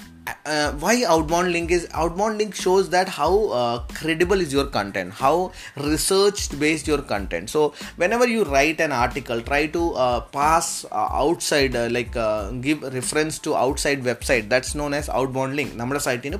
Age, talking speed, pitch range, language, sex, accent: 20-39, 195 wpm, 120-165 Hz, Malayalam, male, native